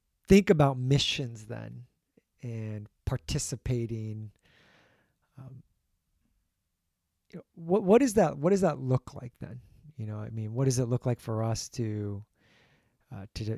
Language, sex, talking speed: English, male, 135 wpm